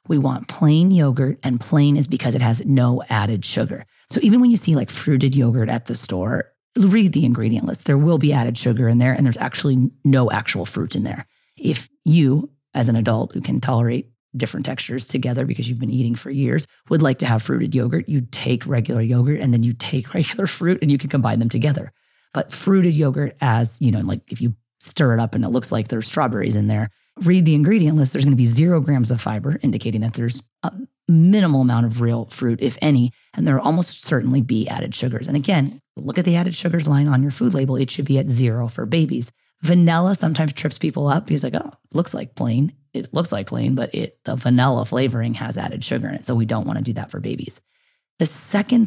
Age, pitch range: 30-49, 120-155 Hz